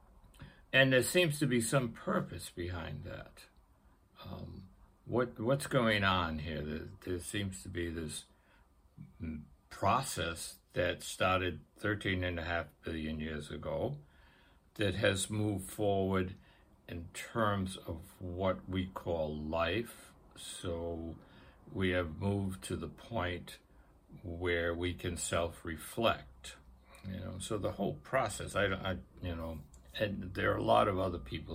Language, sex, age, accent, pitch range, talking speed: English, male, 60-79, American, 80-100 Hz, 135 wpm